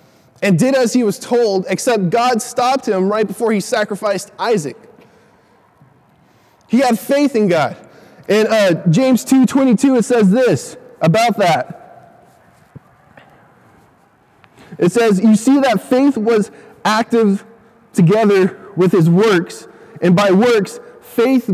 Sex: male